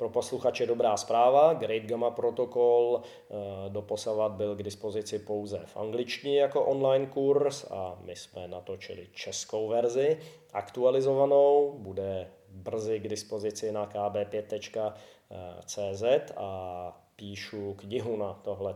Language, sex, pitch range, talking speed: Czech, male, 105-135 Hz, 110 wpm